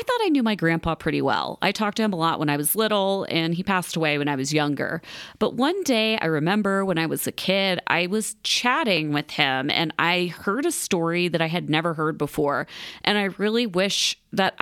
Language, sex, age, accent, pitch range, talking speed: English, female, 30-49, American, 160-215 Hz, 235 wpm